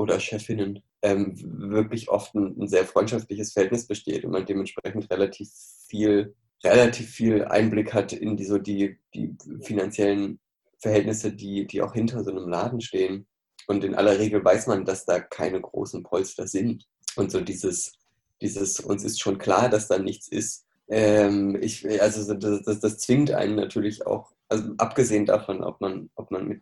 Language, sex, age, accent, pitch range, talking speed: German, male, 20-39, German, 100-110 Hz, 175 wpm